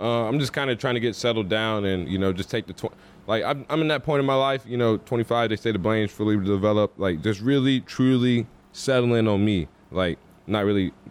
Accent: American